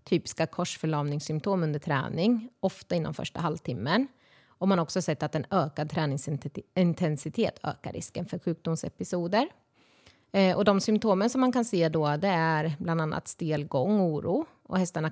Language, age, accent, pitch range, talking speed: Swedish, 30-49, native, 155-210 Hz, 155 wpm